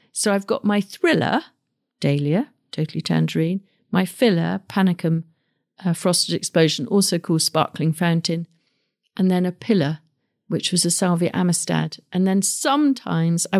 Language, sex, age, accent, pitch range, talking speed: English, female, 50-69, British, 165-200 Hz, 135 wpm